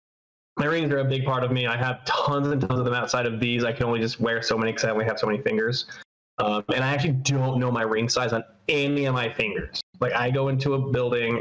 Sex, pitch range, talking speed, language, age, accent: male, 120-140 Hz, 275 wpm, English, 20-39, American